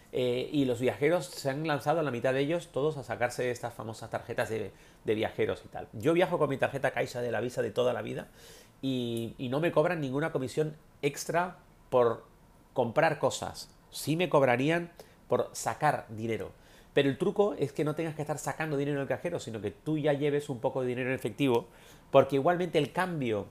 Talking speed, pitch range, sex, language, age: 205 wpm, 125-165 Hz, male, Spanish, 30-49